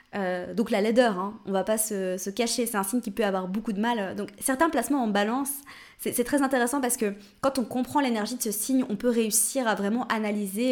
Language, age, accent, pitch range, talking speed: French, 20-39, French, 200-245 Hz, 245 wpm